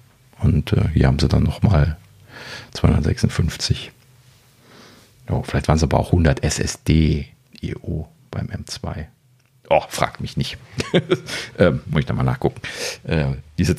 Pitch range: 75-120 Hz